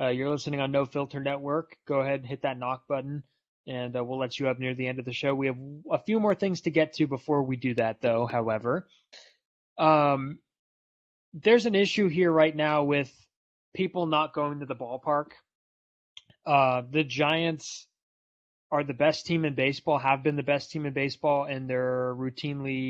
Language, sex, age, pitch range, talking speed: English, male, 20-39, 130-155 Hz, 195 wpm